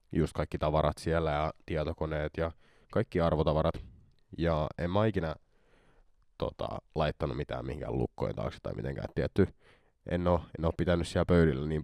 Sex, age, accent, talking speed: male, 30-49, native, 140 wpm